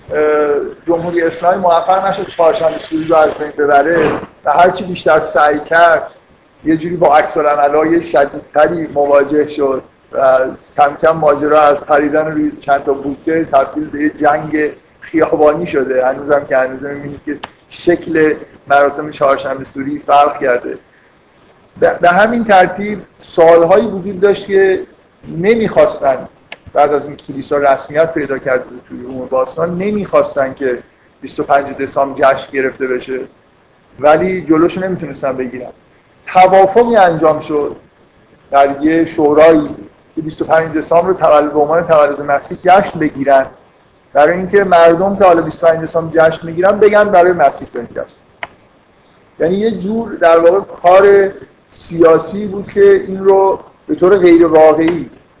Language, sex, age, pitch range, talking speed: Persian, male, 50-69, 145-180 Hz, 140 wpm